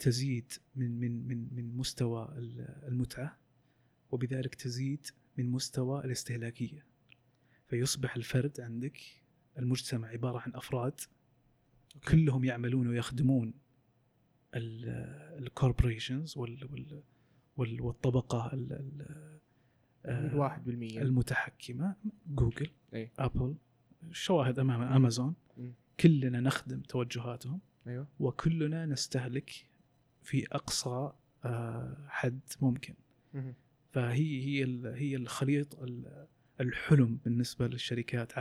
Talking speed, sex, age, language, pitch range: 75 wpm, male, 30-49, Arabic, 120-140 Hz